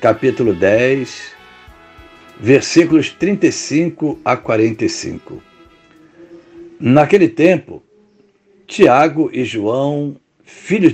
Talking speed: 65 wpm